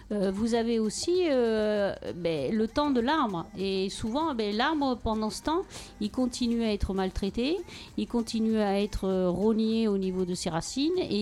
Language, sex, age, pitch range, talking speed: French, female, 50-69, 210-255 Hz, 180 wpm